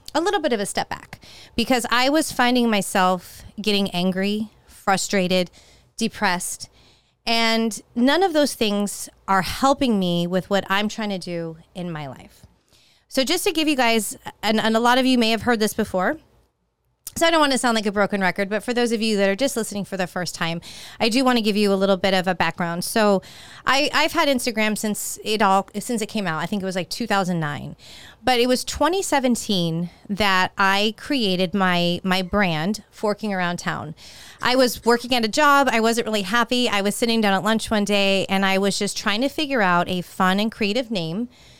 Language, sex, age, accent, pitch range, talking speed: English, female, 30-49, American, 190-240 Hz, 210 wpm